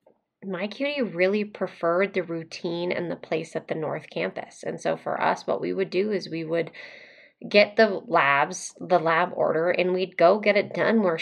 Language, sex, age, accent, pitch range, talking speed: English, female, 20-39, American, 170-200 Hz, 200 wpm